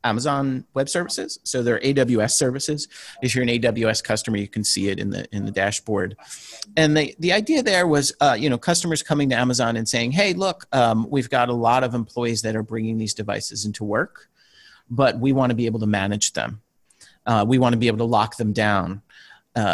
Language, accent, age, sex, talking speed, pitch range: English, American, 40-59, male, 215 wpm, 110-145 Hz